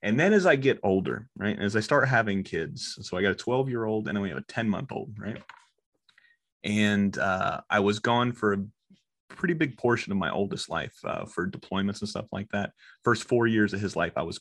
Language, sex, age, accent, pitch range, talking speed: English, male, 30-49, American, 95-115 Hz, 220 wpm